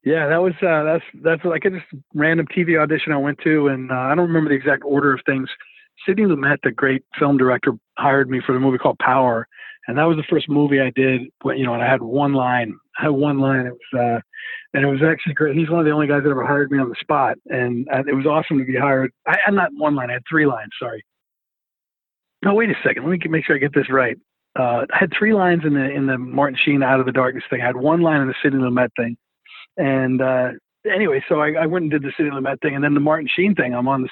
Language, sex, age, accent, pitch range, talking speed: English, male, 40-59, American, 130-160 Hz, 275 wpm